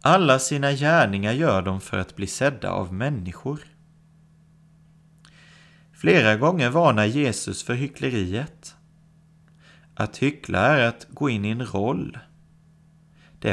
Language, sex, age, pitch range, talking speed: Swedish, male, 30-49, 110-160 Hz, 120 wpm